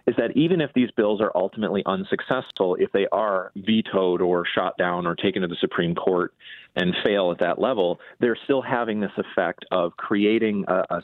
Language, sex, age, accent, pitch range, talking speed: English, male, 30-49, American, 90-110 Hz, 195 wpm